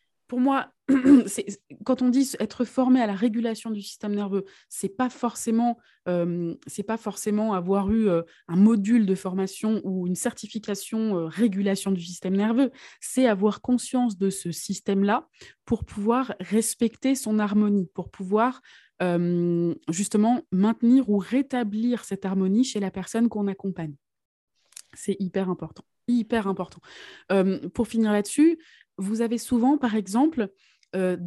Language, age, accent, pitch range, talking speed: French, 20-39, French, 190-235 Hz, 145 wpm